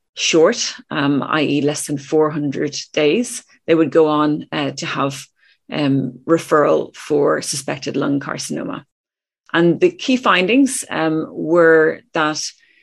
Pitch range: 150-175 Hz